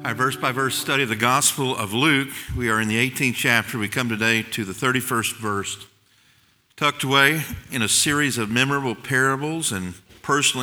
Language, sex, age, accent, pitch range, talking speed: English, male, 50-69, American, 115-140 Hz, 185 wpm